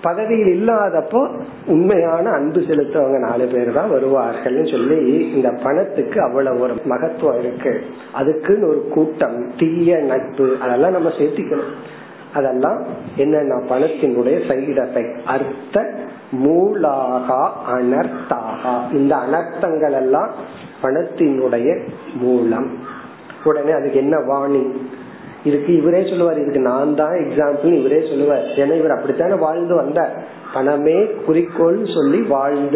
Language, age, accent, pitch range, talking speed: Tamil, 40-59, native, 135-175 Hz, 75 wpm